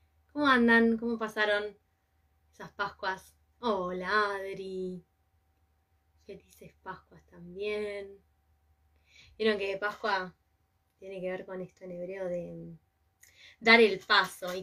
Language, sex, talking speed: Spanish, female, 110 wpm